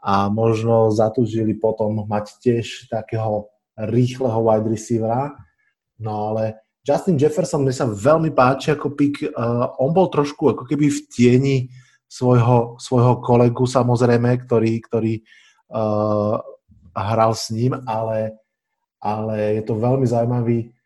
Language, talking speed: Slovak, 125 wpm